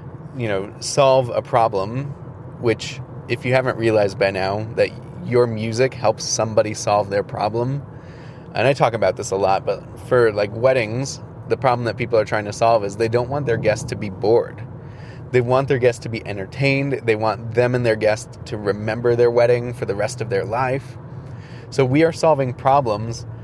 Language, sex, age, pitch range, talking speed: English, male, 20-39, 115-130 Hz, 195 wpm